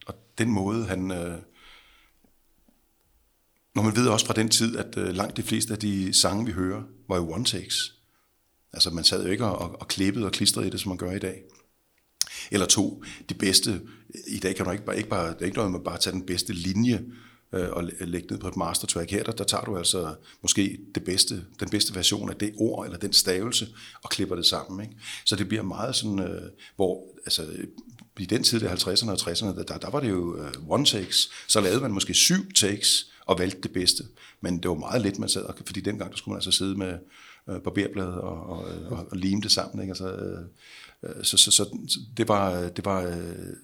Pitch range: 90-110 Hz